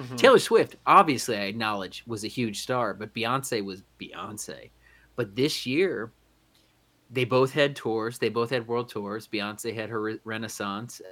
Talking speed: 155 wpm